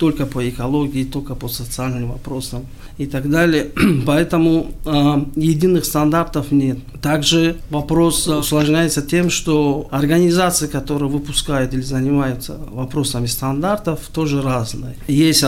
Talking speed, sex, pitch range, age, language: 115 wpm, male, 140-165 Hz, 50-69, Russian